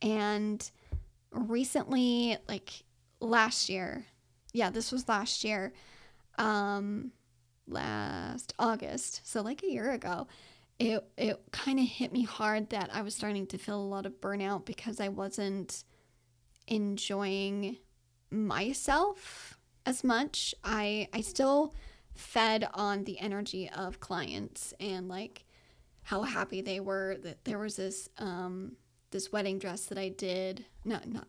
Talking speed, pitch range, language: 135 wpm, 190-230 Hz, English